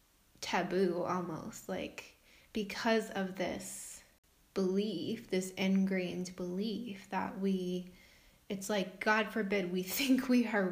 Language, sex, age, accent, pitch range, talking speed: English, female, 20-39, American, 185-210 Hz, 110 wpm